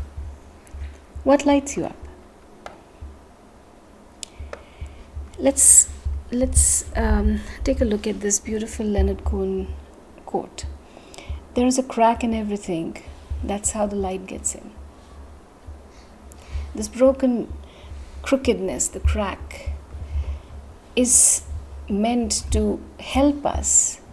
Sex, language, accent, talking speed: female, English, Indian, 95 wpm